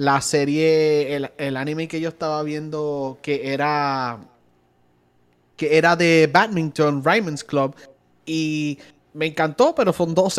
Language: English